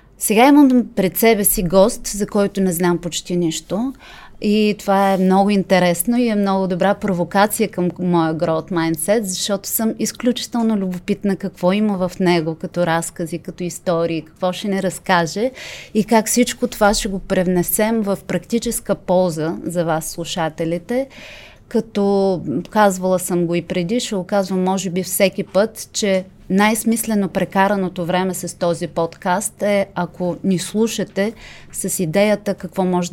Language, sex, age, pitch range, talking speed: Bulgarian, female, 30-49, 175-205 Hz, 150 wpm